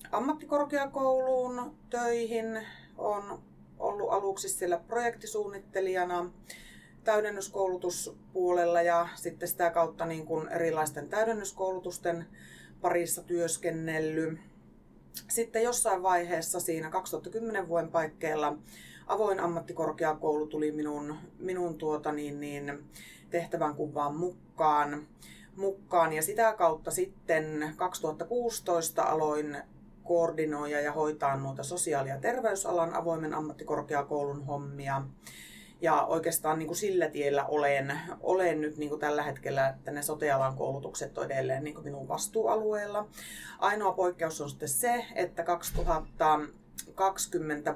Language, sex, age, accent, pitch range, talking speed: Finnish, female, 30-49, native, 145-185 Hz, 100 wpm